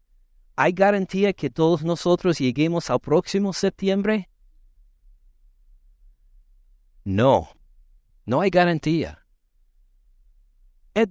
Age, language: 60-79, Spanish